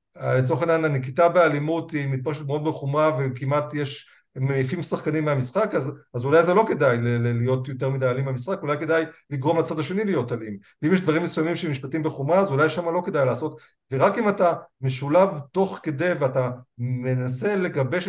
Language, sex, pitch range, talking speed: Hebrew, male, 135-170 Hz, 180 wpm